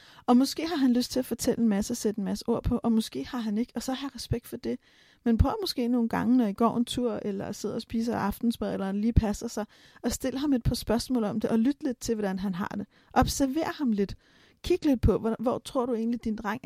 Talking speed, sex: 270 wpm, female